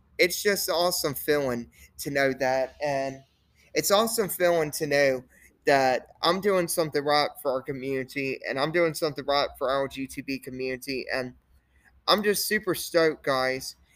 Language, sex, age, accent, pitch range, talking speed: English, male, 20-39, American, 105-155 Hz, 155 wpm